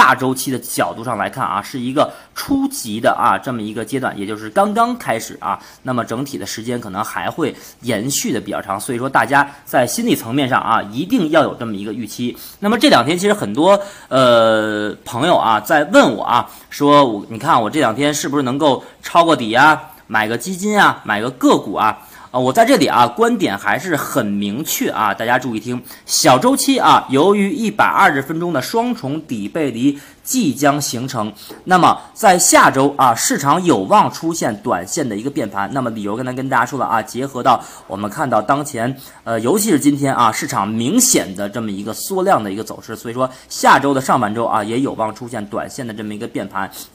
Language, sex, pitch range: Chinese, male, 110-160 Hz